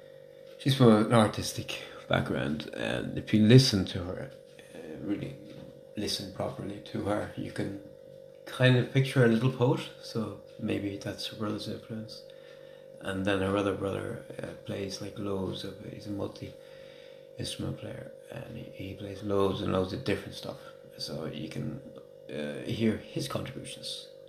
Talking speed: 155 wpm